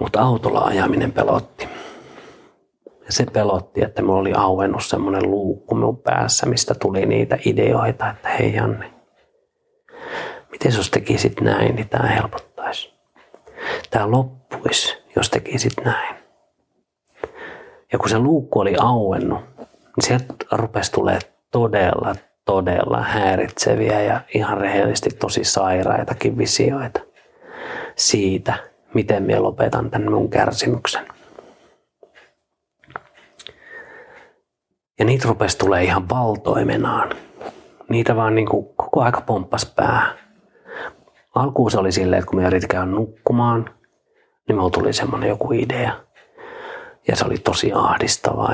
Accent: native